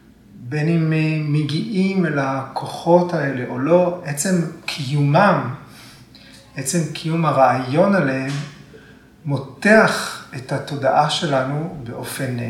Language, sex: Hebrew, male